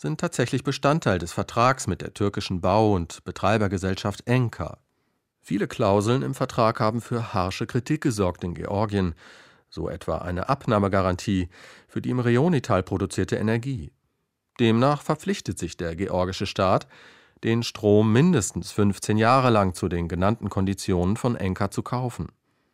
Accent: German